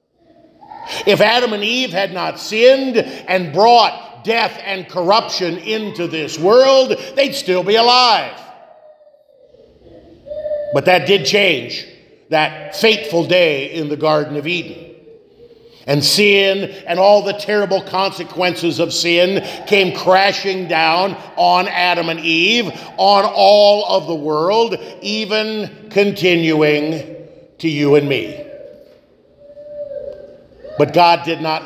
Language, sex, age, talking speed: English, male, 50-69, 120 wpm